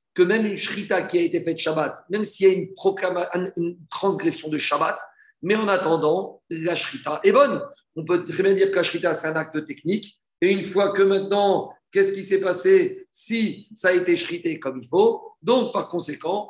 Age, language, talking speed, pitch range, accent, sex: 50-69, French, 210 wpm, 160-195 Hz, French, male